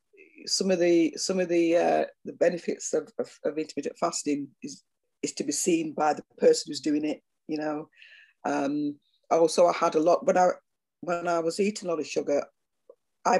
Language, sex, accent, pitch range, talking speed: English, female, British, 155-225 Hz, 195 wpm